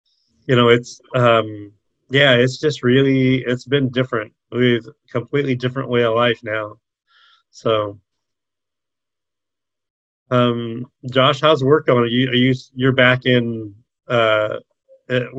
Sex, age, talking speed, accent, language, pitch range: male, 30-49, 115 wpm, American, English, 115-135 Hz